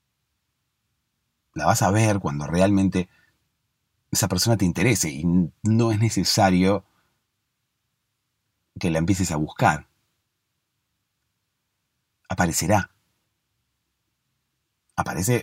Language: Spanish